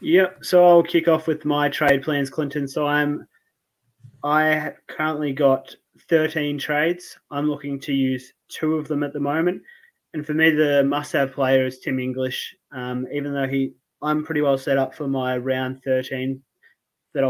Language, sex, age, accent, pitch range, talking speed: English, male, 20-39, Australian, 135-155 Hz, 180 wpm